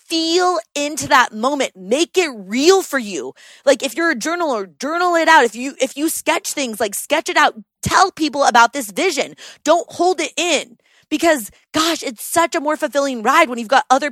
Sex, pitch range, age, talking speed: female, 215-310 Hz, 20-39, 205 wpm